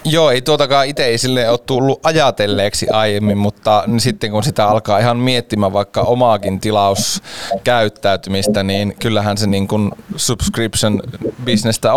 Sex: male